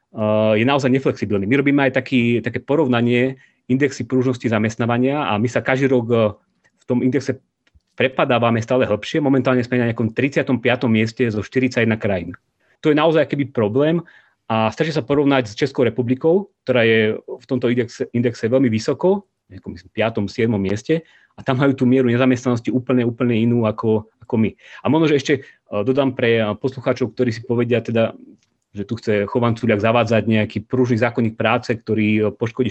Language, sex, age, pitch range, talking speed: Slovak, male, 30-49, 110-135 Hz, 170 wpm